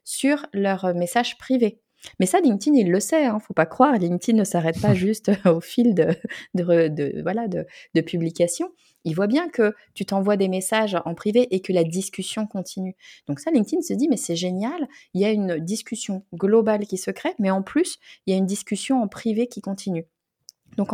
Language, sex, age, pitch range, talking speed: French, female, 30-49, 165-225 Hz, 215 wpm